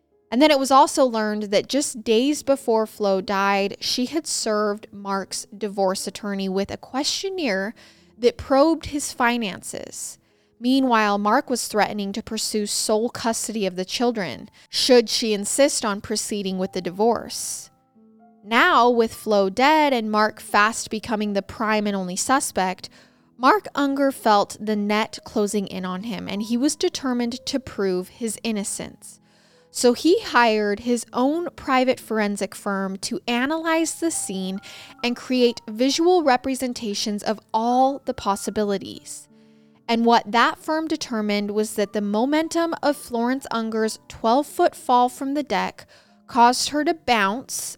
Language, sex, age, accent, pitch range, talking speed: English, female, 20-39, American, 205-265 Hz, 145 wpm